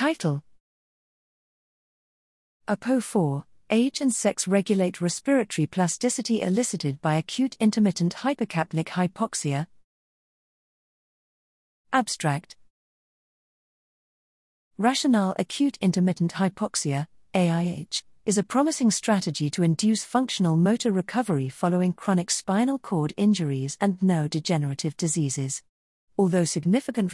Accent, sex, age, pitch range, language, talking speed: British, female, 40-59, 160-215 Hz, English, 85 wpm